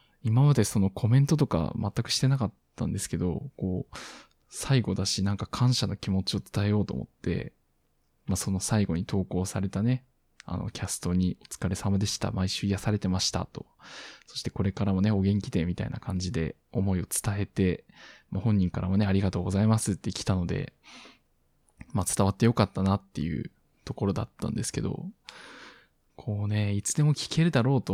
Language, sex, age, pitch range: Japanese, male, 20-39, 95-130 Hz